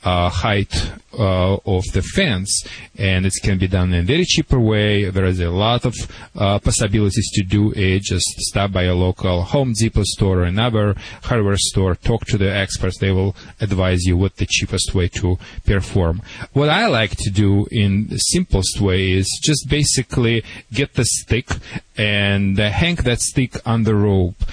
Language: English